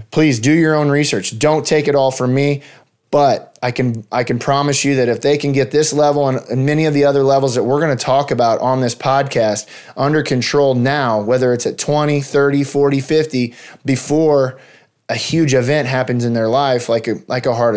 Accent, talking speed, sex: American, 215 wpm, male